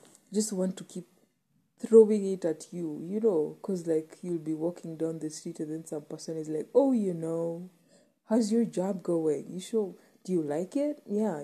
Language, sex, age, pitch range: English, female, 20-39, 160-200 Hz